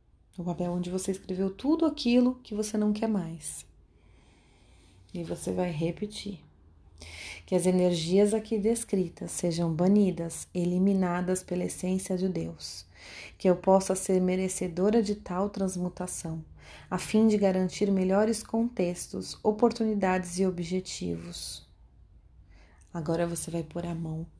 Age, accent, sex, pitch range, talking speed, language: 30-49, Brazilian, female, 165-200 Hz, 125 wpm, Portuguese